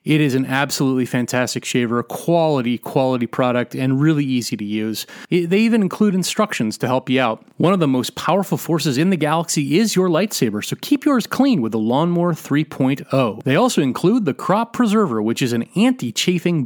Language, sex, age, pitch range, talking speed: English, male, 30-49, 125-180 Hz, 190 wpm